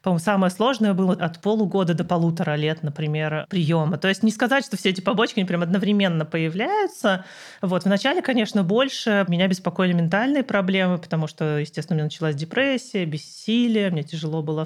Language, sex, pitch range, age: Russian, male, 165-210 Hz, 30-49